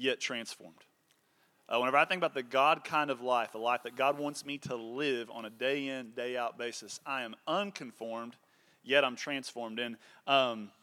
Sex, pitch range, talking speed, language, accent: male, 135-170 Hz, 185 wpm, English, American